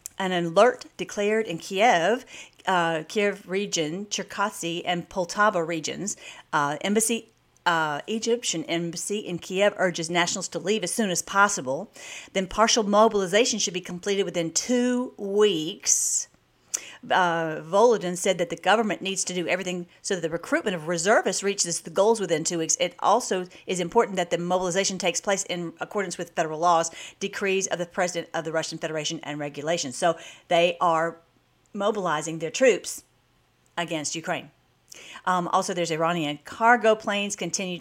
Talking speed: 155 wpm